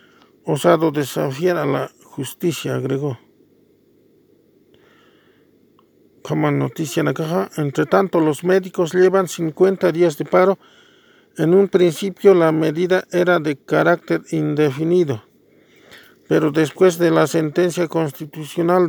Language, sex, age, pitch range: English, male, 50-69, 145-180 Hz